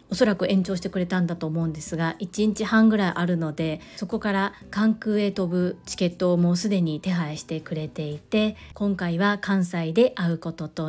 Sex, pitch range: female, 170-215 Hz